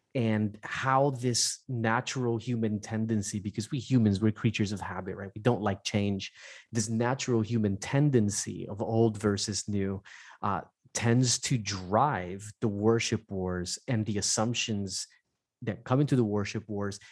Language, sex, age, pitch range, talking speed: English, male, 20-39, 105-120 Hz, 145 wpm